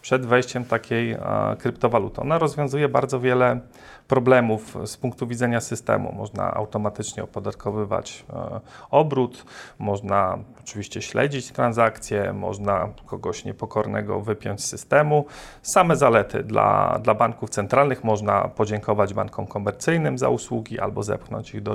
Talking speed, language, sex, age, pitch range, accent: 120 wpm, Polish, male, 40-59, 110-135 Hz, native